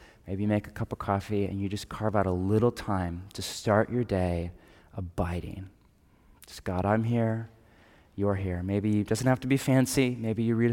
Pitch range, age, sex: 100-120 Hz, 20-39, male